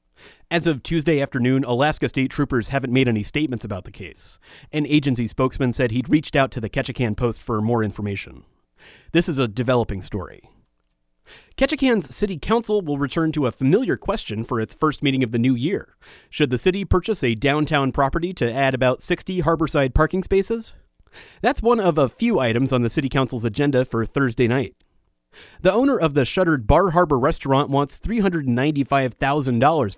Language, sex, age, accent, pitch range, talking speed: English, male, 30-49, American, 120-160 Hz, 175 wpm